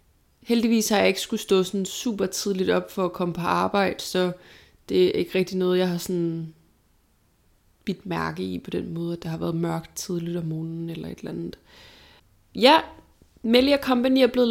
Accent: native